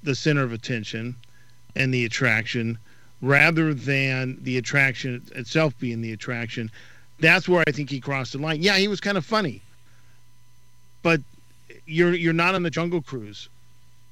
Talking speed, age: 155 wpm, 50-69